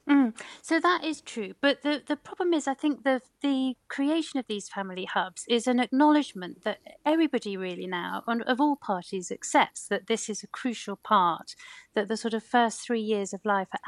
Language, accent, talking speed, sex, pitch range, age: English, British, 200 wpm, female, 200-255 Hz, 40-59